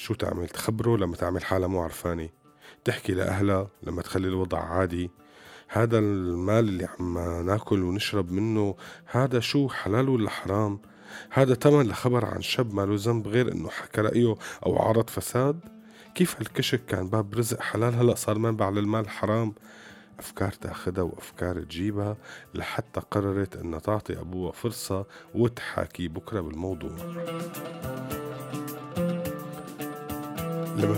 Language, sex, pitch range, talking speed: Arabic, male, 90-115 Hz, 125 wpm